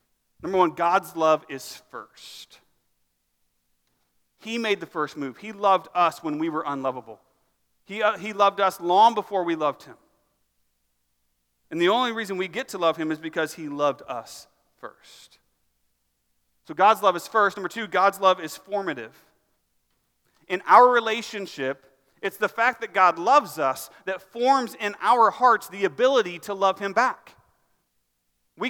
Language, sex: English, male